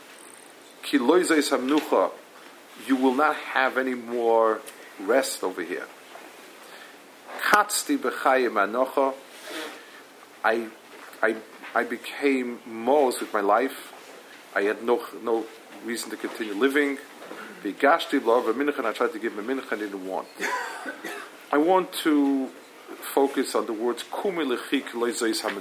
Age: 40-59